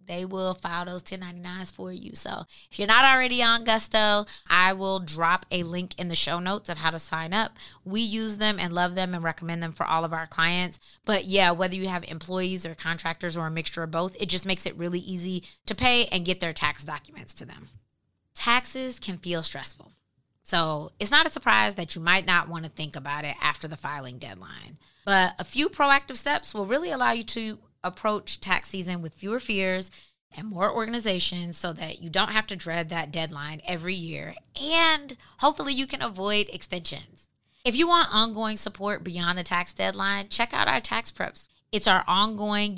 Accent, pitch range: American, 165-210 Hz